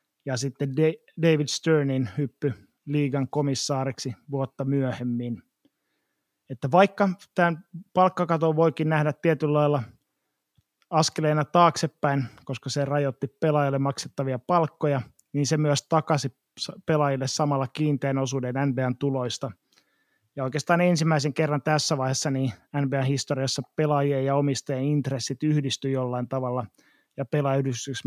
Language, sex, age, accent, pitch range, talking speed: Finnish, male, 30-49, native, 135-155 Hz, 115 wpm